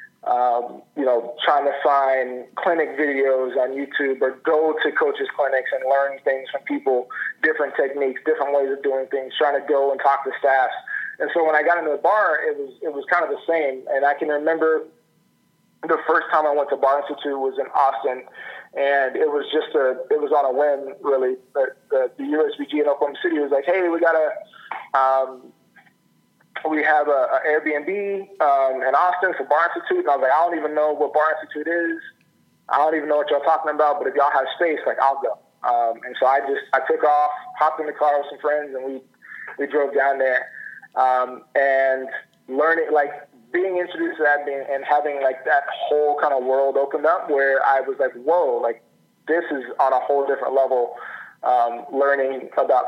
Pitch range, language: 135-165 Hz, English